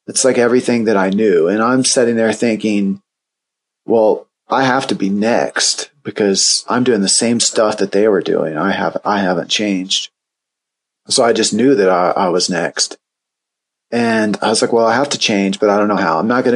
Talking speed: 205 wpm